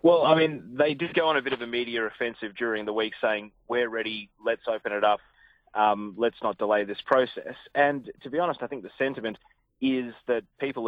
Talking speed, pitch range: 220 wpm, 115-135 Hz